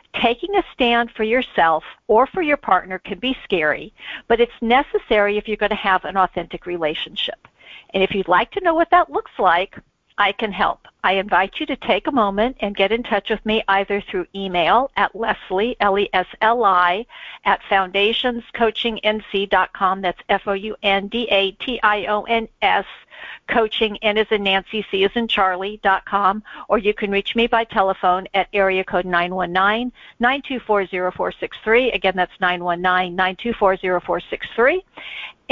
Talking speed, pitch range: 140 wpm, 190-235 Hz